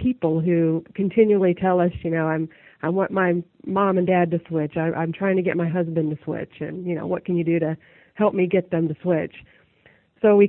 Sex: female